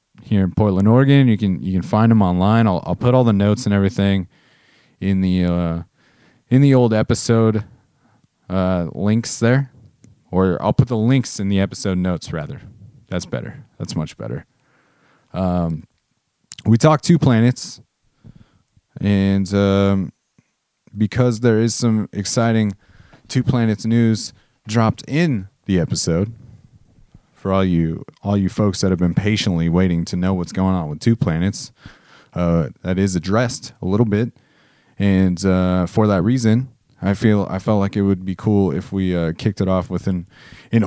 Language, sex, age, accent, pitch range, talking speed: English, male, 30-49, American, 95-115 Hz, 165 wpm